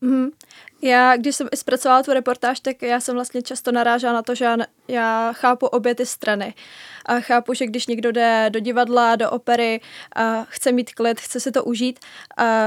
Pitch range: 230-250 Hz